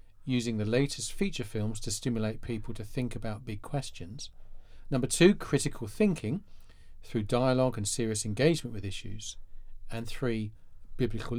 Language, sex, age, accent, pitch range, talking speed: English, male, 40-59, British, 105-135 Hz, 140 wpm